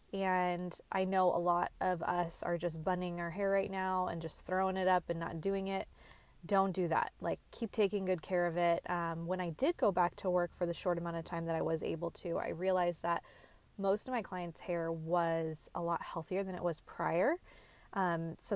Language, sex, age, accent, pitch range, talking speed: English, female, 20-39, American, 170-200 Hz, 225 wpm